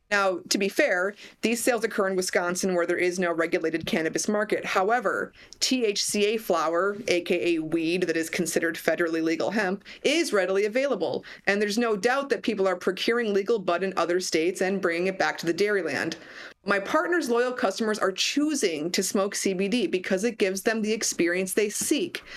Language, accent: English, American